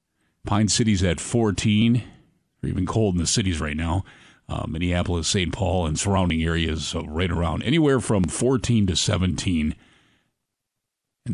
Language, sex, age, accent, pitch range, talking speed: English, male, 50-69, American, 85-115 Hz, 145 wpm